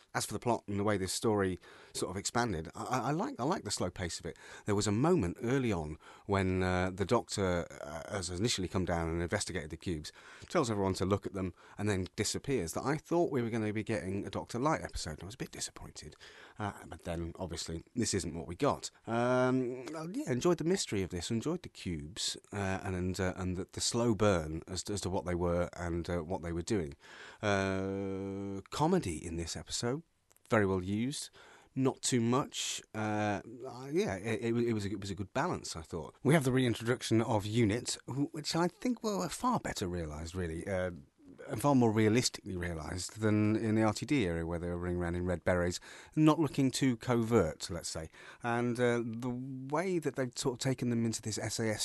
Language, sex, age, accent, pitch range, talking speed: English, male, 30-49, British, 90-120 Hz, 210 wpm